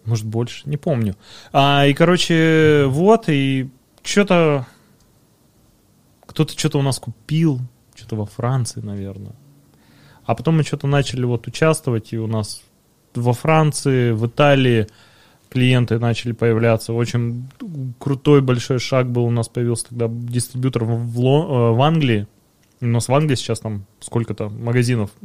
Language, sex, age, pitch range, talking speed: Russian, male, 20-39, 115-140 Hz, 140 wpm